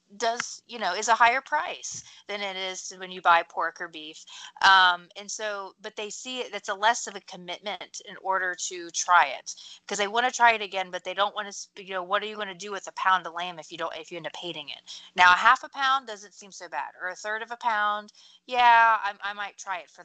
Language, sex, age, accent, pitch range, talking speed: English, female, 30-49, American, 170-210 Hz, 270 wpm